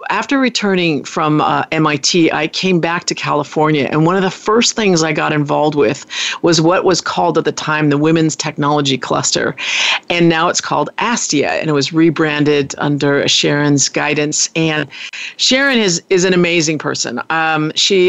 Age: 50-69